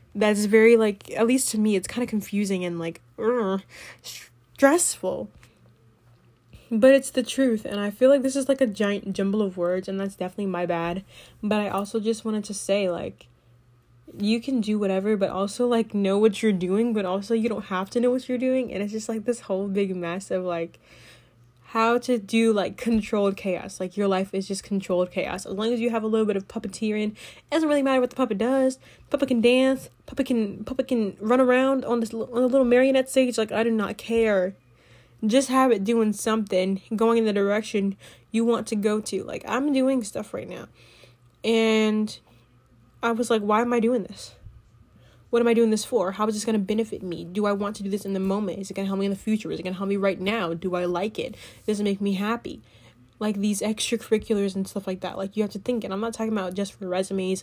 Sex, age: female, 10-29